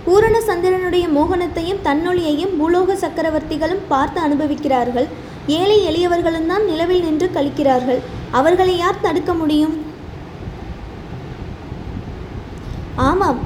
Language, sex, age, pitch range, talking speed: Tamil, female, 20-39, 295-365 Hz, 85 wpm